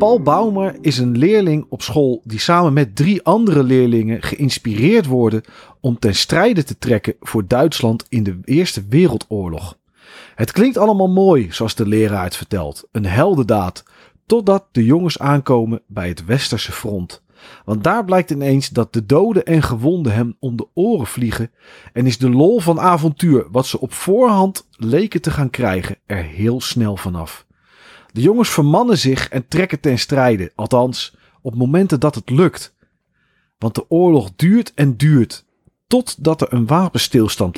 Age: 40-59